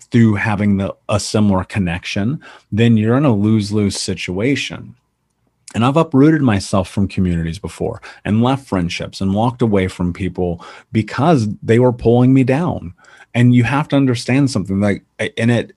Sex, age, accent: male, 30-49, American